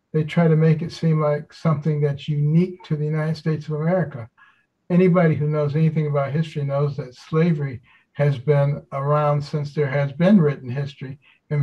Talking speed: 180 wpm